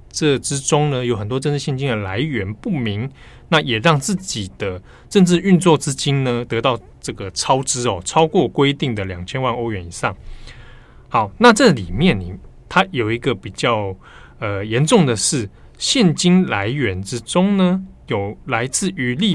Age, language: 20-39, Chinese